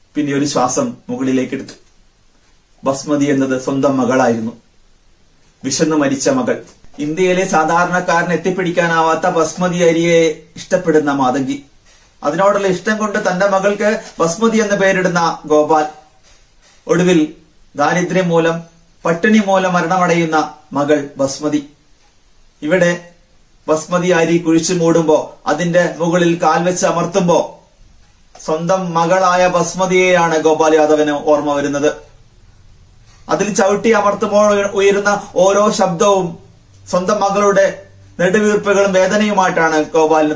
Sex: male